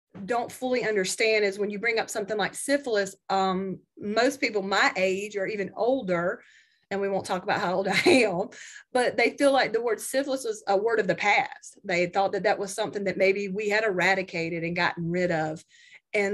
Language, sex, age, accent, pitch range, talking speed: English, female, 30-49, American, 180-215 Hz, 210 wpm